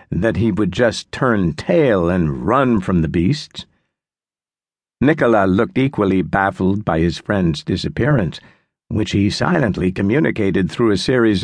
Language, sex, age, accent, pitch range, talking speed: English, male, 60-79, American, 95-120 Hz, 135 wpm